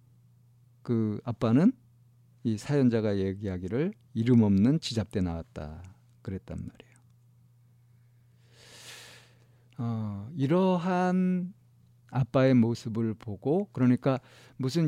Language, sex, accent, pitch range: Korean, male, native, 110-125 Hz